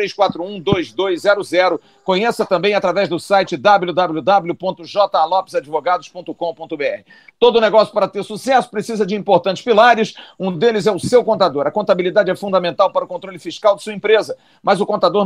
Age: 50-69